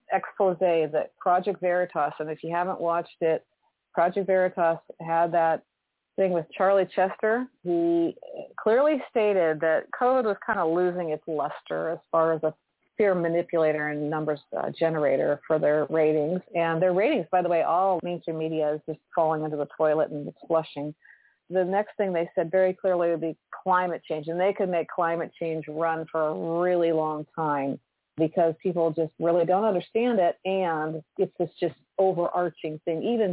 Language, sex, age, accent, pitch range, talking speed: English, female, 40-59, American, 160-185 Hz, 175 wpm